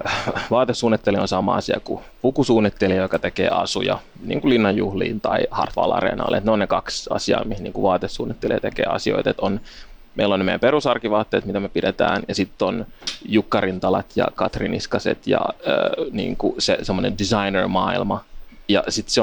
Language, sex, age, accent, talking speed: Finnish, male, 30-49, native, 150 wpm